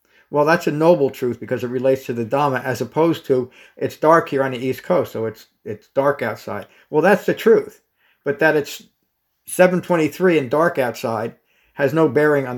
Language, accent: English, American